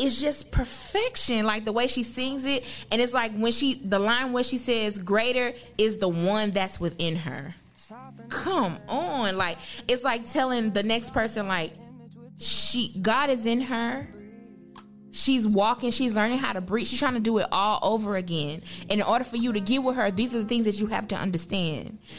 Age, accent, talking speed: 20-39, American, 200 wpm